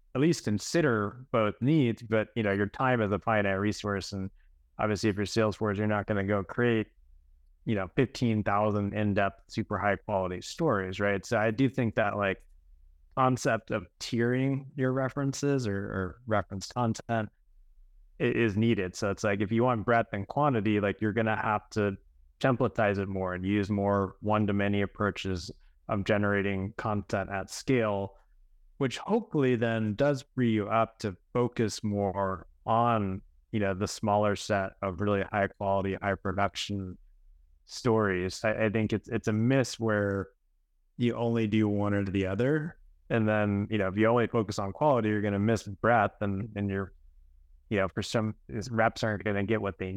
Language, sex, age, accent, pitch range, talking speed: English, male, 20-39, American, 95-115 Hz, 180 wpm